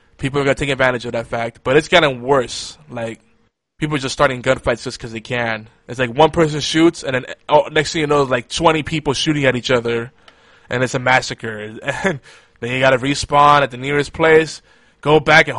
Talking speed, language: 230 wpm, English